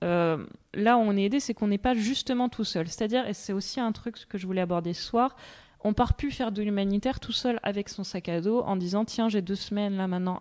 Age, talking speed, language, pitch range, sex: 20-39, 270 wpm, French, 180-225 Hz, female